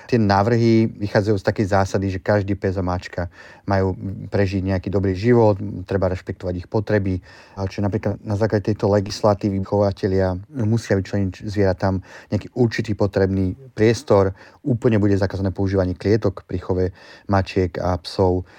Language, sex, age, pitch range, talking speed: Slovak, male, 30-49, 95-105 Hz, 140 wpm